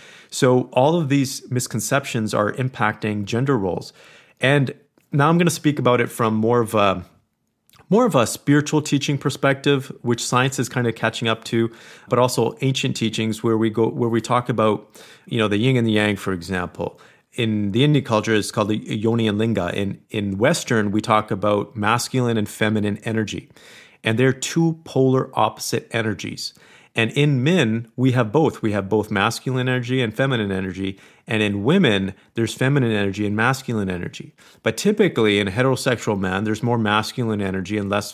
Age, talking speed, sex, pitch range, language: 30-49, 185 wpm, male, 105-130 Hz, English